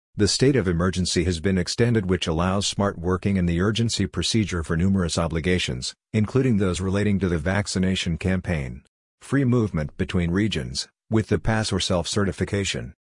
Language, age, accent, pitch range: English, 50-69, American, 90-105 Hz